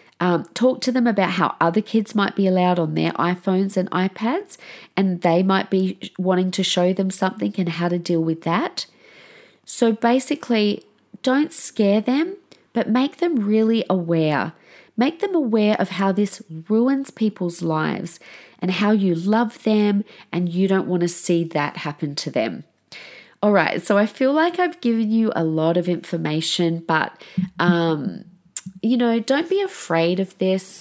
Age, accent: 30-49, Australian